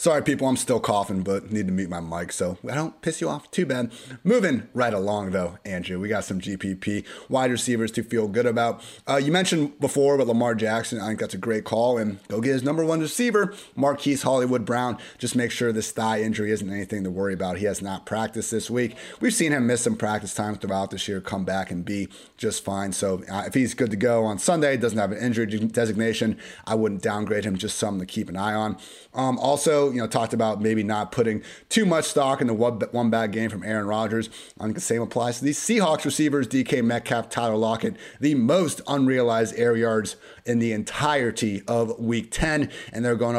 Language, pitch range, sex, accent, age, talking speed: English, 105-135 Hz, male, American, 30-49, 225 wpm